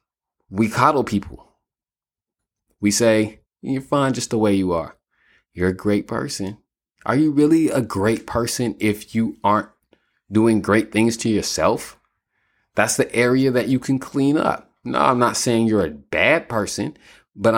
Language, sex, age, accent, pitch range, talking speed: English, male, 30-49, American, 95-120 Hz, 160 wpm